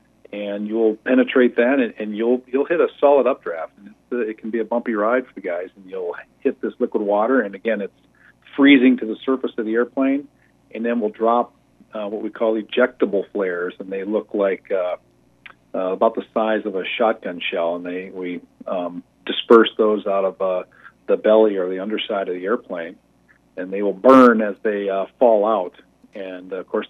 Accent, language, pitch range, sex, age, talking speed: American, English, 100-120 Hz, male, 40-59, 200 wpm